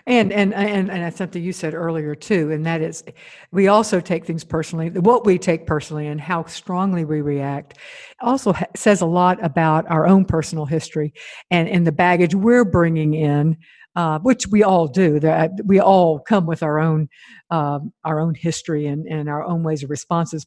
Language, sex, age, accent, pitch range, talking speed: English, female, 60-79, American, 155-185 Hz, 195 wpm